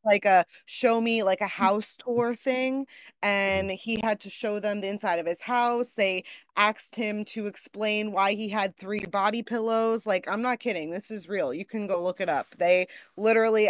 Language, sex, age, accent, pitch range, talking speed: English, female, 20-39, American, 180-220 Hz, 200 wpm